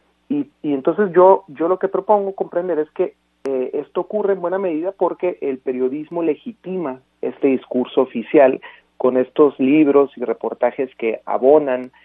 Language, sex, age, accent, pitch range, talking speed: Spanish, male, 40-59, Mexican, 125-160 Hz, 155 wpm